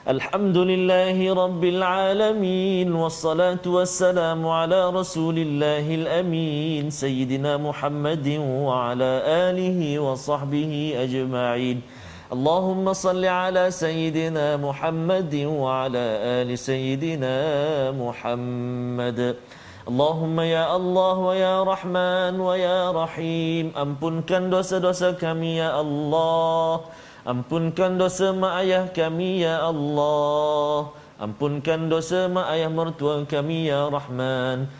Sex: male